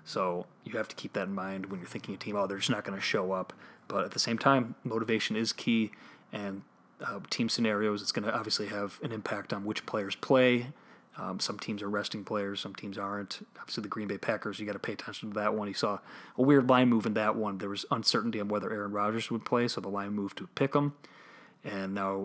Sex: male